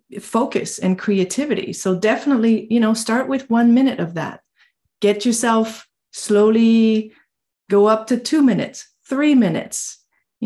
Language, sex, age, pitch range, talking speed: English, female, 30-49, 190-235 Hz, 140 wpm